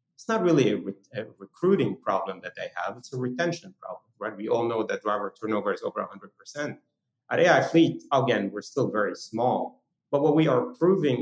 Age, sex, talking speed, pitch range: 30-49, male, 205 wpm, 115-160 Hz